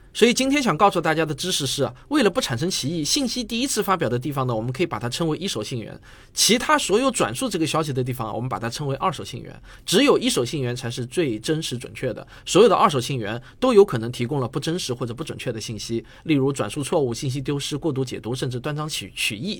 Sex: male